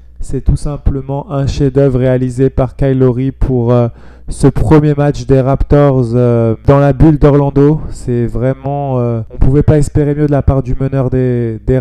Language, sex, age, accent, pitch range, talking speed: French, male, 20-39, French, 115-140 Hz, 195 wpm